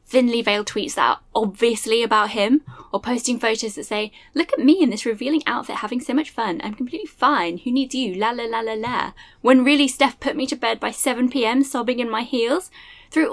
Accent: British